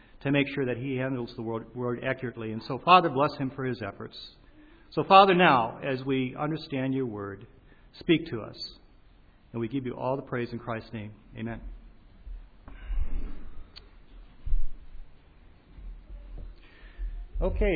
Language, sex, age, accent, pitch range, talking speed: English, male, 50-69, American, 110-155 Hz, 135 wpm